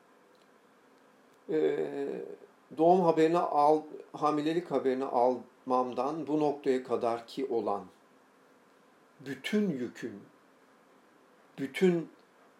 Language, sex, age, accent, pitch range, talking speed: Turkish, male, 50-69, native, 125-150 Hz, 70 wpm